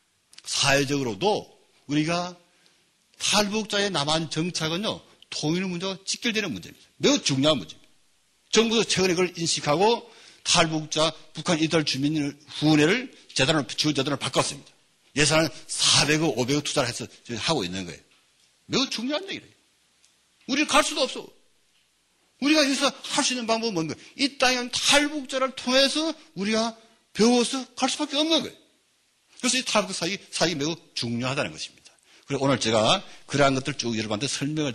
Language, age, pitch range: Korean, 60-79, 150-215 Hz